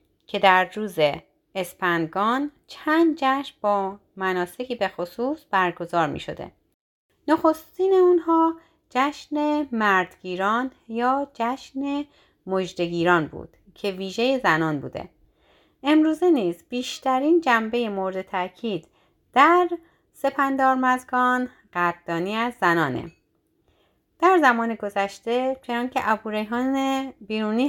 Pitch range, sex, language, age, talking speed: 190-275 Hz, female, Persian, 30-49, 95 wpm